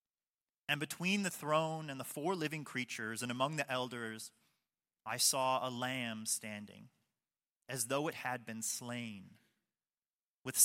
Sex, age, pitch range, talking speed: male, 30-49, 120-165 Hz, 140 wpm